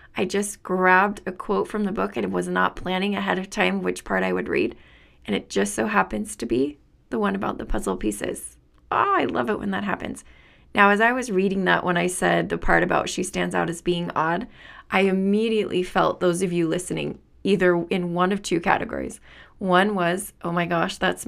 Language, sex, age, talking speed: English, female, 20-39, 215 wpm